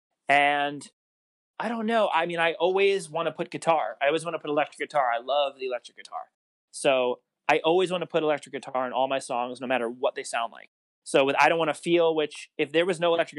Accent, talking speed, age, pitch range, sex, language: American, 245 wpm, 30-49, 130-165 Hz, male, English